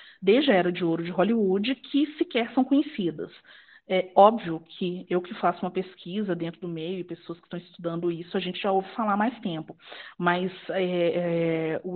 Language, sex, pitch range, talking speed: Portuguese, female, 180-240 Hz, 190 wpm